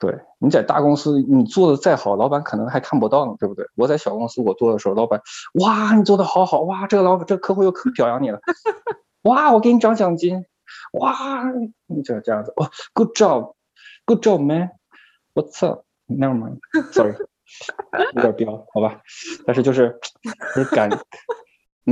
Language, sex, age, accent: Chinese, male, 20-39, native